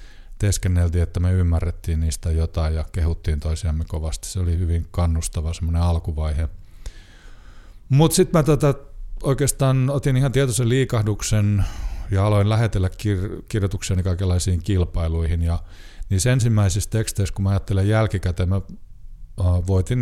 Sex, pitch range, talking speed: male, 85-100 Hz, 125 wpm